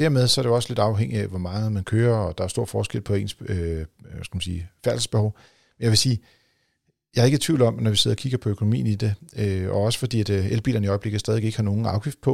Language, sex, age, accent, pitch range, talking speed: Danish, male, 40-59, native, 105-125 Hz, 270 wpm